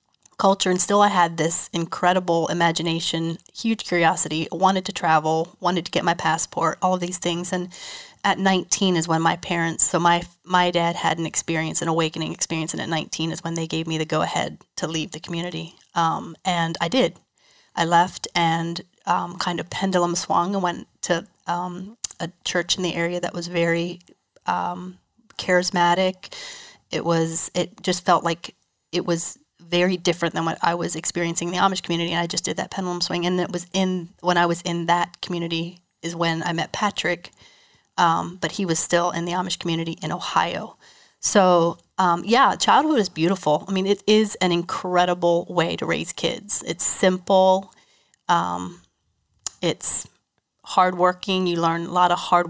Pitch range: 165-185 Hz